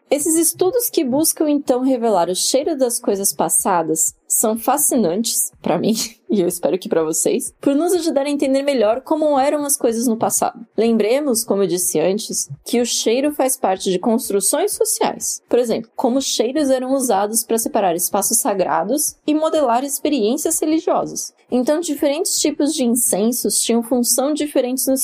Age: 20-39